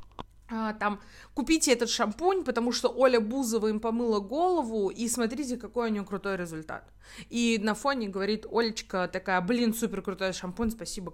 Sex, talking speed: female, 155 wpm